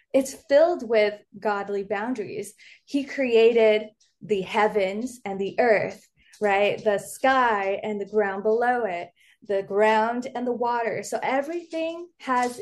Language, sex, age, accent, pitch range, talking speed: English, female, 20-39, American, 210-250 Hz, 135 wpm